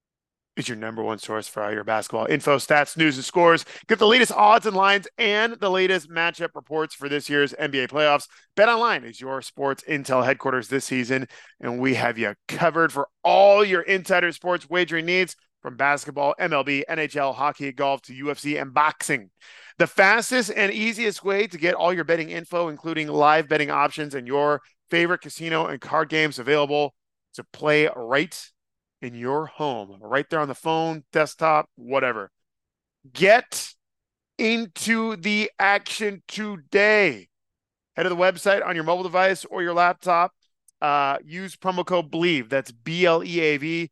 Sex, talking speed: male, 165 wpm